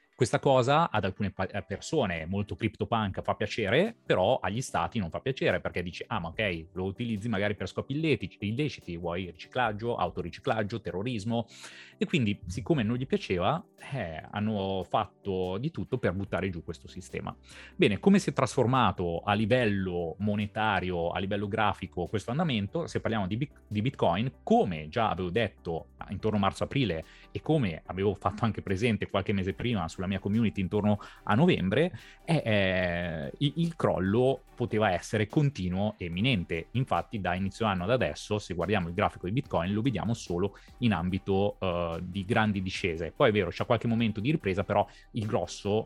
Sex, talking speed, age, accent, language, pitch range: male, 170 wpm, 30-49, native, Italian, 95-120 Hz